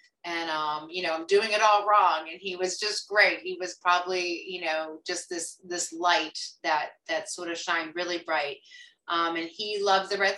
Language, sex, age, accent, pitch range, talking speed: English, female, 30-49, American, 170-200 Hz, 210 wpm